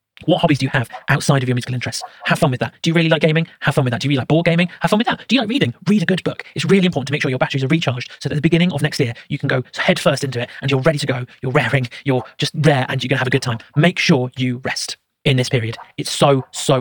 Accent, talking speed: British, 335 wpm